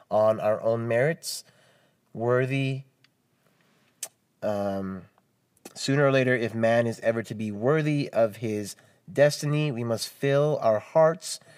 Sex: male